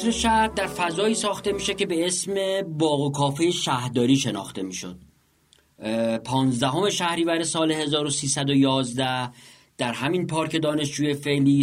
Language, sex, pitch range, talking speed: Persian, male, 125-160 Hz, 120 wpm